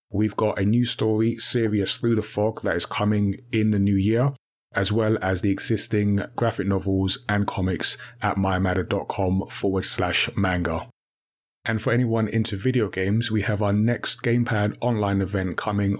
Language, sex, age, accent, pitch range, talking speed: English, male, 30-49, British, 100-115 Hz, 165 wpm